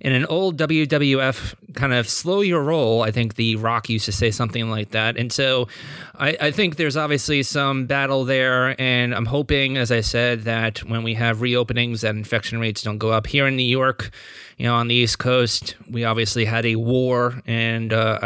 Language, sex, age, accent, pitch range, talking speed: English, male, 30-49, American, 110-130 Hz, 205 wpm